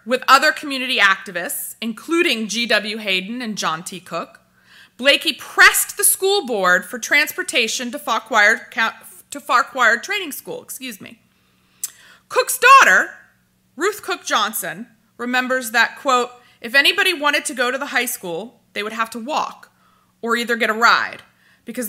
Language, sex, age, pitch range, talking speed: English, female, 30-49, 200-265 Hz, 145 wpm